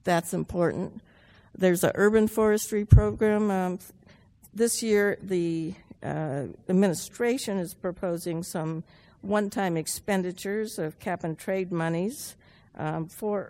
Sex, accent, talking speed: female, American, 100 wpm